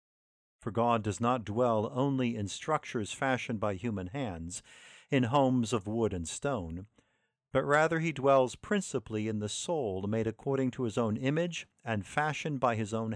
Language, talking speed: English, 170 wpm